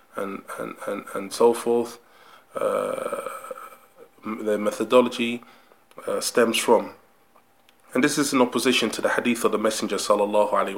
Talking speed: 140 wpm